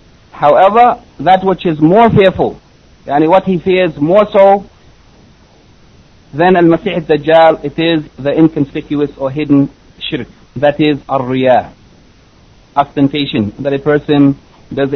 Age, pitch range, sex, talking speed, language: 60-79, 140-185 Hz, male, 120 wpm, English